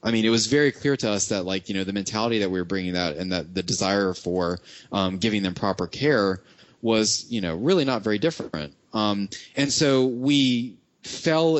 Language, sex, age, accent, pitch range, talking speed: English, male, 20-39, American, 90-110 Hz, 210 wpm